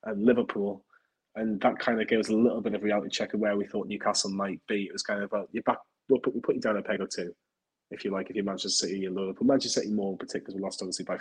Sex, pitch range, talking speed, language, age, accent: male, 100-110 Hz, 295 wpm, English, 20-39, British